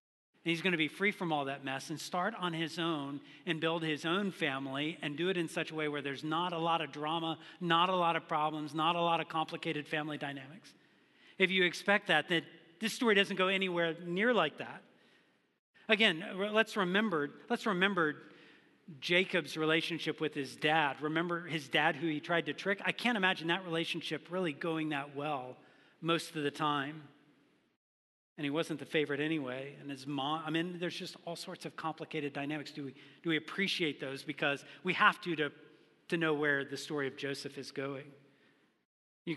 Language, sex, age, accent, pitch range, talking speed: English, male, 40-59, American, 145-170 Hz, 195 wpm